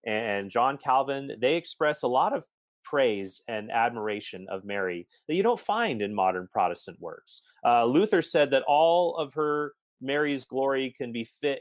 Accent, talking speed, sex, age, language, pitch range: American, 170 wpm, male, 30-49, English, 110-140 Hz